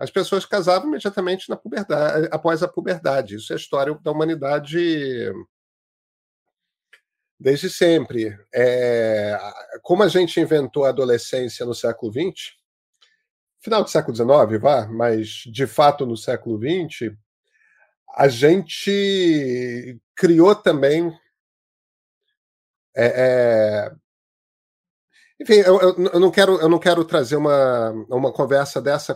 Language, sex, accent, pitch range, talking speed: Portuguese, male, Brazilian, 130-185 Hz, 120 wpm